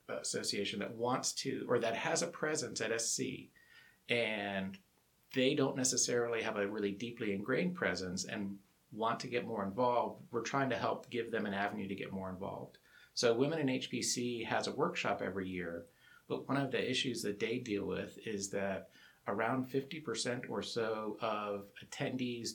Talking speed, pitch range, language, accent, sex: 175 wpm, 95-115 Hz, English, American, male